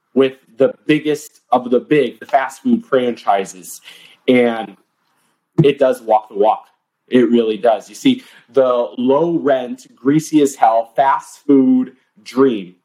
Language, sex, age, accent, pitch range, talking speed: English, male, 30-49, American, 125-155 Hz, 135 wpm